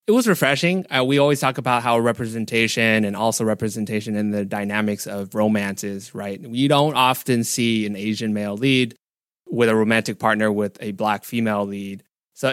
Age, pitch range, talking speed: 20-39, 105-125 Hz, 175 wpm